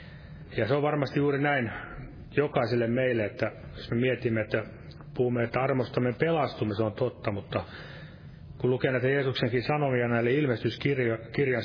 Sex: male